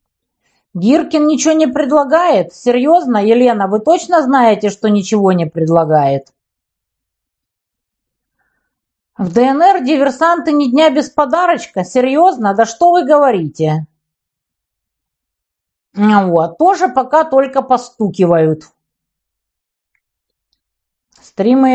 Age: 50-69